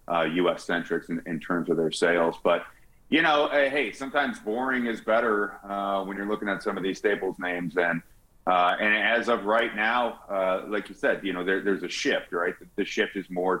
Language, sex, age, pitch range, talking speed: English, male, 30-49, 85-100 Hz, 225 wpm